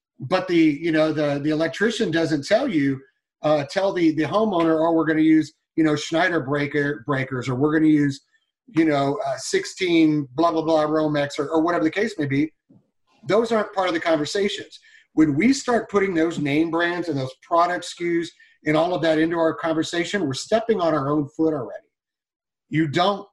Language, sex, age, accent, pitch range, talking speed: English, male, 40-59, American, 150-175 Hz, 200 wpm